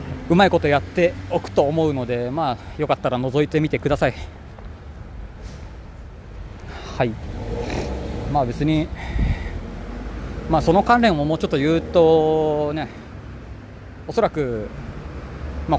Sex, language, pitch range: male, Japanese, 105-155 Hz